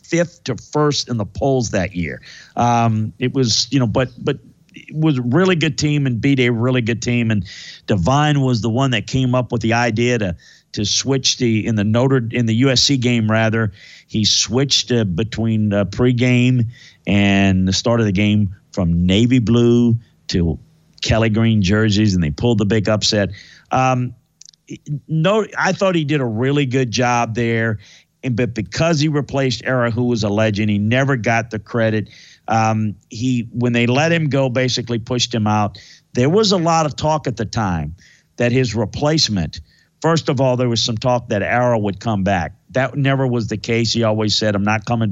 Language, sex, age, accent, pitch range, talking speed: English, male, 50-69, American, 110-135 Hz, 195 wpm